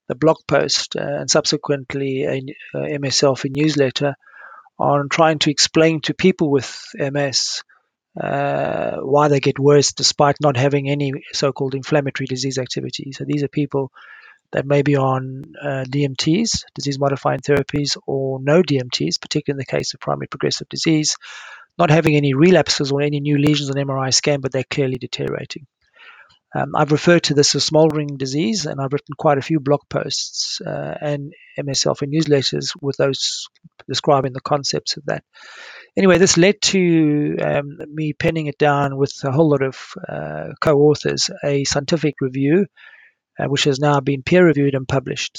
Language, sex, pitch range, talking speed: English, male, 135-155 Hz, 165 wpm